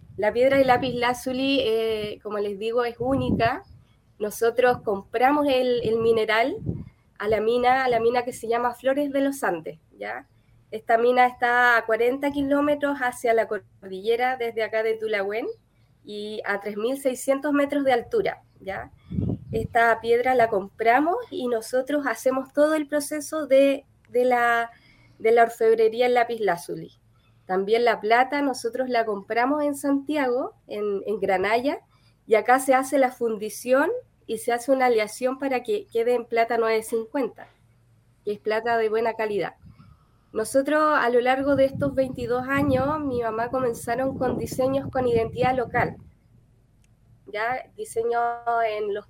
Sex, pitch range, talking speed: female, 220-260 Hz, 150 wpm